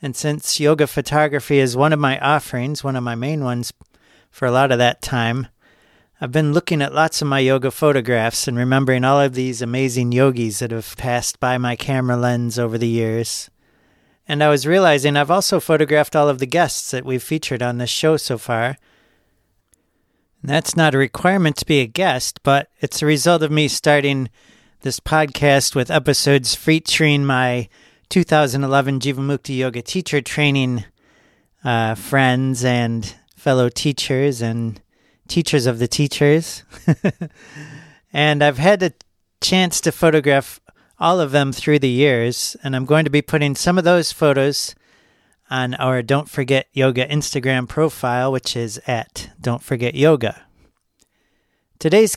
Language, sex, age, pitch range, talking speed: English, male, 40-59, 125-150 Hz, 160 wpm